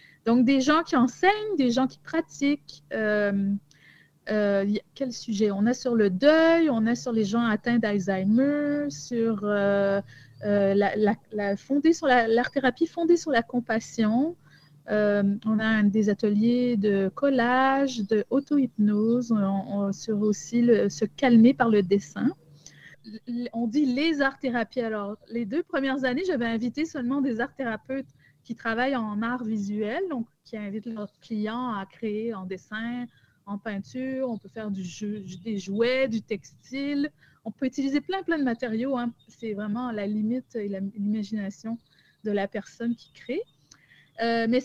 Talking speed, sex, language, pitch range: 160 wpm, female, French, 210-265 Hz